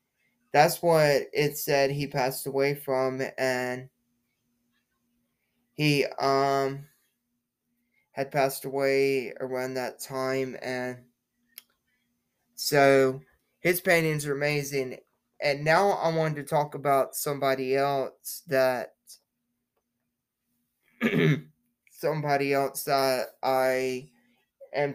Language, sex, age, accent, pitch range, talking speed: English, male, 20-39, American, 130-145 Hz, 90 wpm